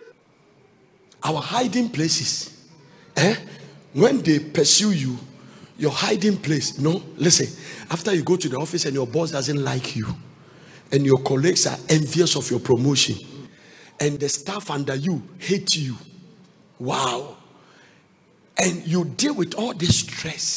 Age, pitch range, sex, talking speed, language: 50-69, 145-200 Hz, male, 140 wpm, English